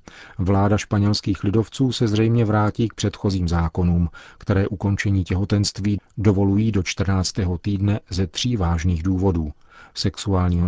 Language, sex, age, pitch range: Czech, male, 40-59, 90-105 Hz